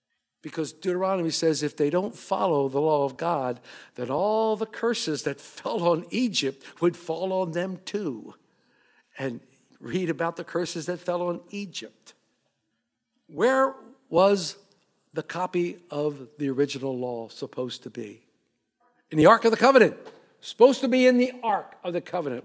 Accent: American